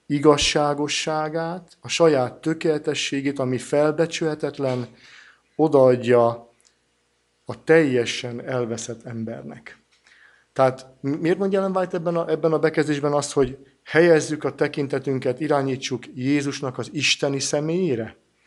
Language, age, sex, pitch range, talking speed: Hungarian, 50-69, male, 125-155 Hz, 95 wpm